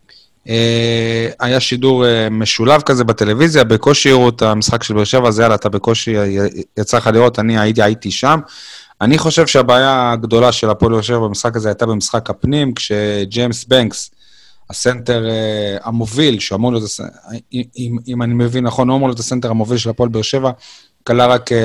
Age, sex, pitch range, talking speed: 30-49, male, 110-130 Hz, 140 wpm